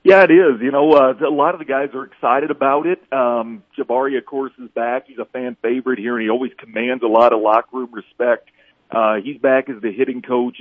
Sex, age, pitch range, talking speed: male, 40-59, 120-150 Hz, 245 wpm